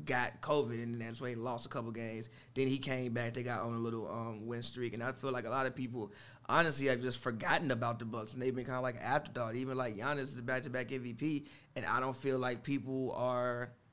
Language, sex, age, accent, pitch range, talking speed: English, male, 20-39, American, 120-140 Hz, 255 wpm